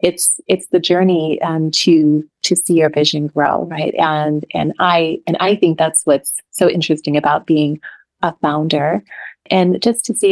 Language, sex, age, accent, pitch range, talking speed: English, female, 30-49, American, 160-180 Hz, 175 wpm